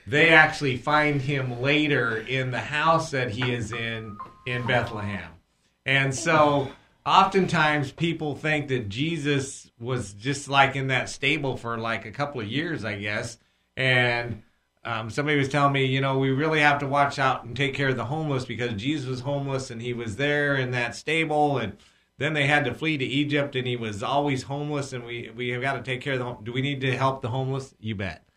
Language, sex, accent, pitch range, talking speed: English, male, American, 115-145 Hz, 205 wpm